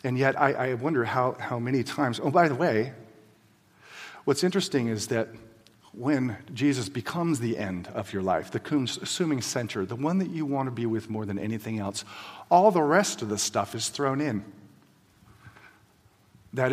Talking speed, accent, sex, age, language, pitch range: 180 wpm, American, male, 40-59, English, 110-150 Hz